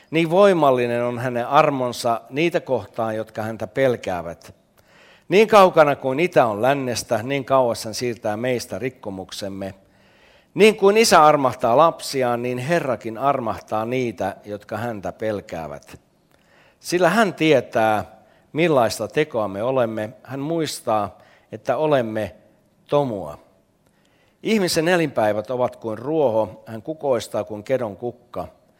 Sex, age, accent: male, 60-79, native